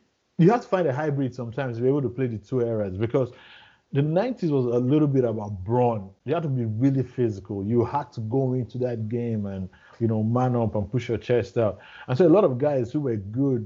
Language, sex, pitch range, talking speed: English, male, 120-150 Hz, 245 wpm